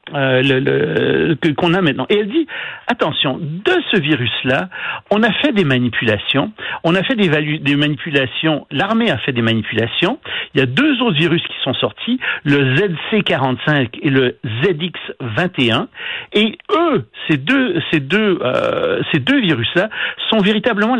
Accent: French